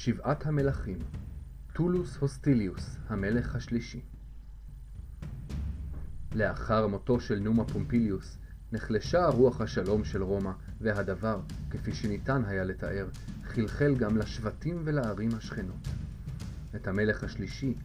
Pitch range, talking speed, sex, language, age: 90-120 Hz, 100 wpm, male, Hebrew, 30-49